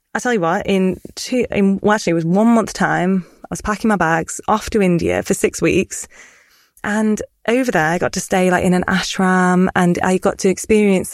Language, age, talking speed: English, 20-39, 215 wpm